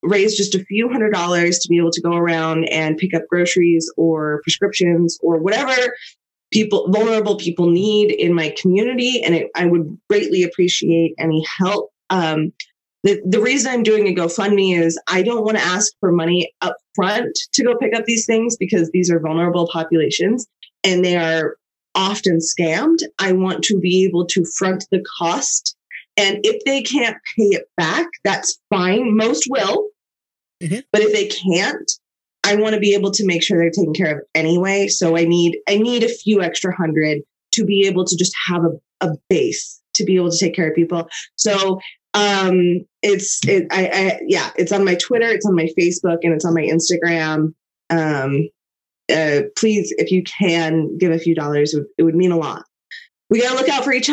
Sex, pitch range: female, 170-210 Hz